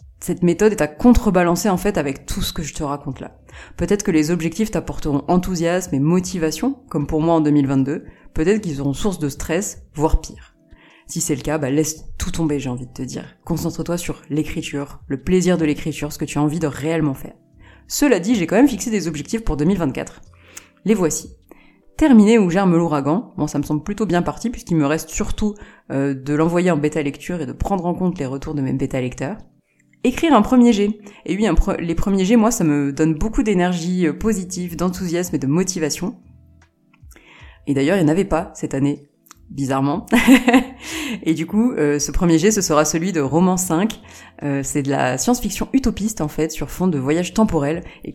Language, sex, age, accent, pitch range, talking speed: French, female, 20-39, French, 145-200 Hz, 205 wpm